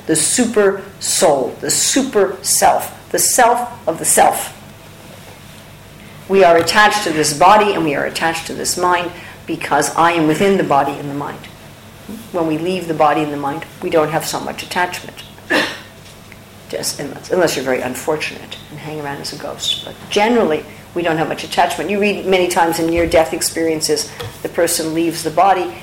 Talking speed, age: 180 wpm, 50-69